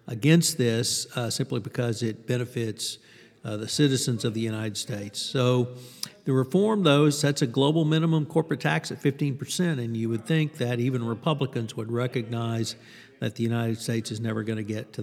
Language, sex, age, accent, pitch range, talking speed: English, male, 50-69, American, 115-140 Hz, 185 wpm